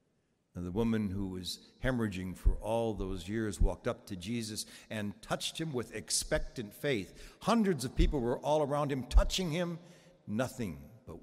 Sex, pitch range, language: male, 90-130 Hz, English